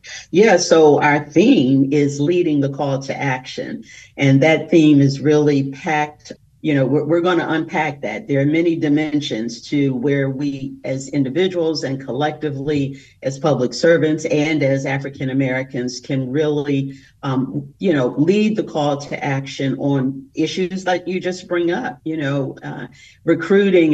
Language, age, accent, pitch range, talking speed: English, 50-69, American, 135-155 Hz, 160 wpm